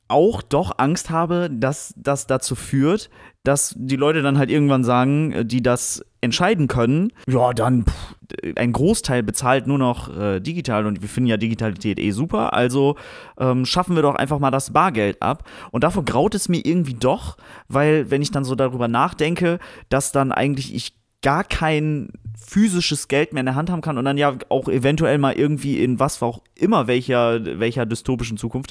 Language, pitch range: German, 115-145 Hz